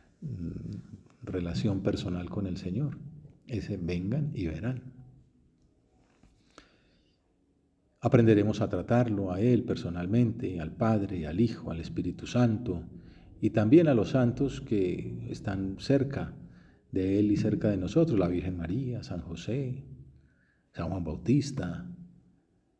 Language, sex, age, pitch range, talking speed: Spanish, male, 40-59, 95-130 Hz, 115 wpm